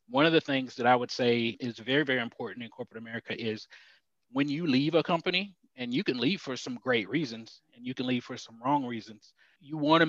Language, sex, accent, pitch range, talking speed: English, male, American, 120-140 Hz, 240 wpm